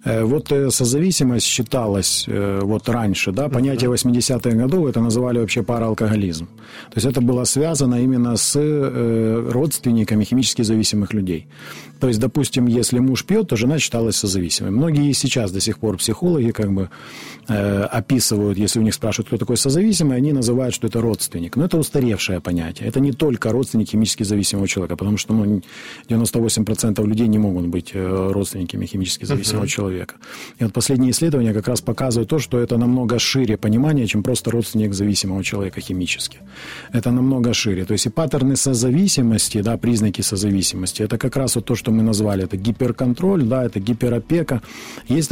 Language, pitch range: Ukrainian, 105-130 Hz